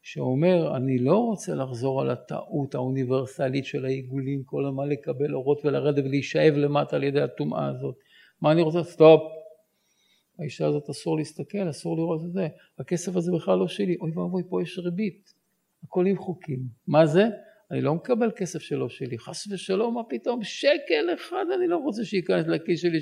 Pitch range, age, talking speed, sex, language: 150-195 Hz, 60-79, 170 wpm, male, Hebrew